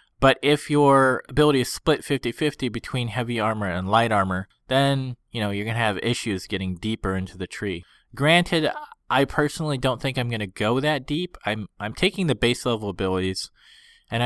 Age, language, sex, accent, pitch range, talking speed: 20-39, English, male, American, 105-140 Hz, 190 wpm